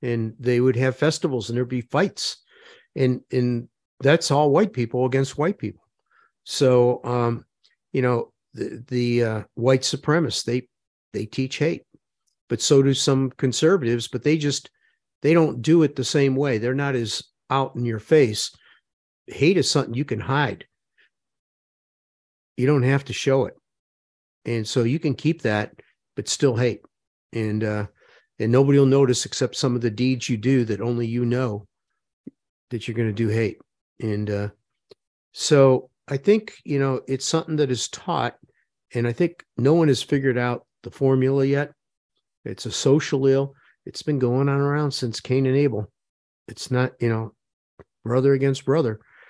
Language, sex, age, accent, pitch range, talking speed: English, male, 50-69, American, 115-140 Hz, 170 wpm